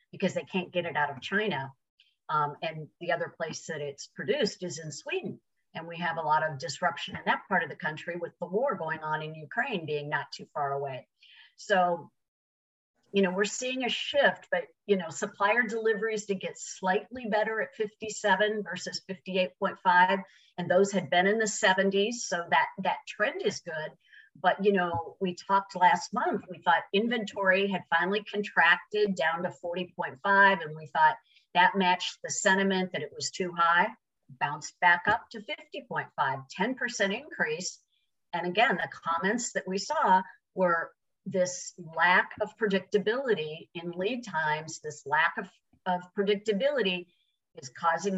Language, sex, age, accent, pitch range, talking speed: English, female, 50-69, American, 170-210 Hz, 165 wpm